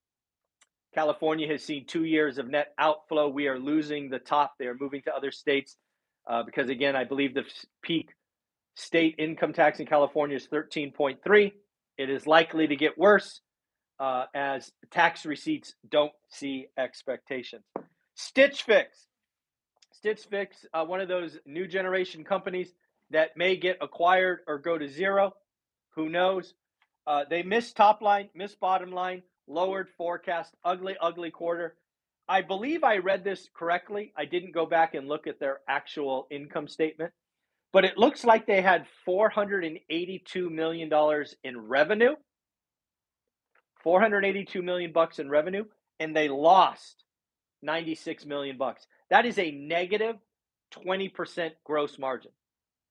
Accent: American